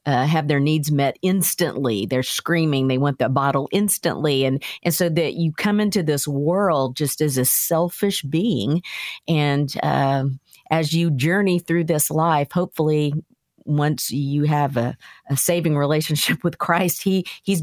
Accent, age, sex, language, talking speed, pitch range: American, 50-69, female, English, 160 wpm, 140-170 Hz